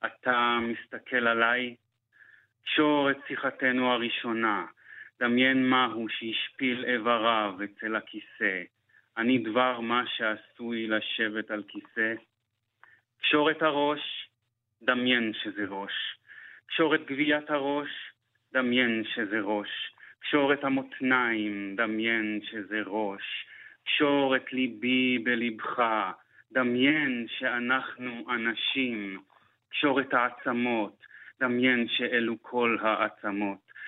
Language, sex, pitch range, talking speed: Hebrew, male, 115-130 Hz, 95 wpm